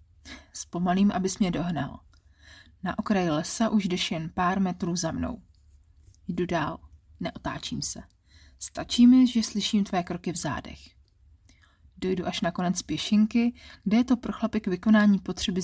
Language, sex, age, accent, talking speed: Czech, female, 30-49, native, 145 wpm